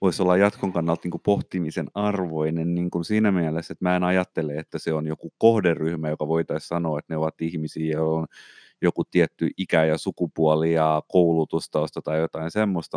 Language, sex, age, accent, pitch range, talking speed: Finnish, male, 30-49, native, 80-95 Hz, 185 wpm